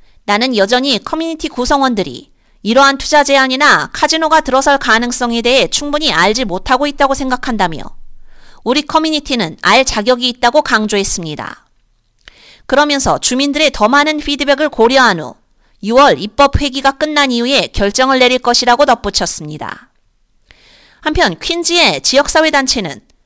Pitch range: 240-305 Hz